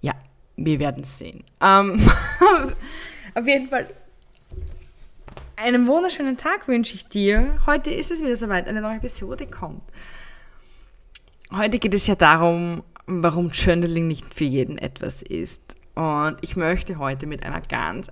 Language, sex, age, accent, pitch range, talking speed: German, female, 20-39, German, 130-180 Hz, 140 wpm